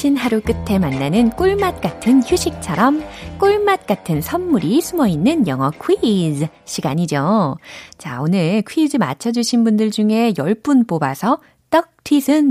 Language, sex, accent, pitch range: Korean, female, native, 170-275 Hz